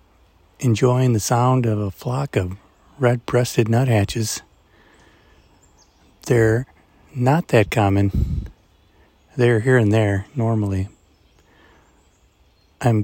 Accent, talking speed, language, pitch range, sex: American, 85 wpm, English, 85-110 Hz, male